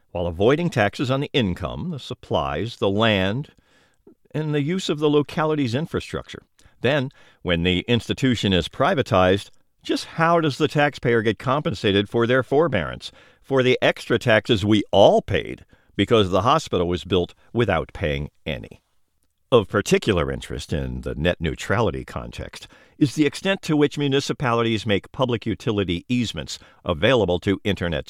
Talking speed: 145 wpm